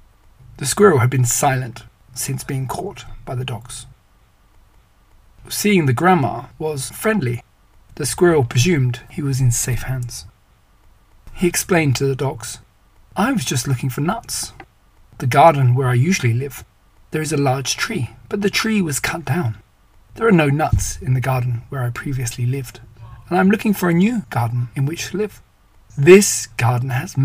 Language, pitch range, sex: English, 120-145 Hz, male